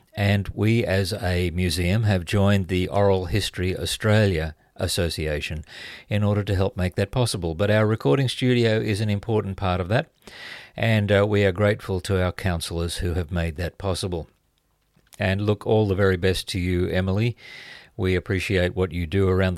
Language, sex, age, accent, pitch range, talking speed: English, male, 50-69, Australian, 90-105 Hz, 175 wpm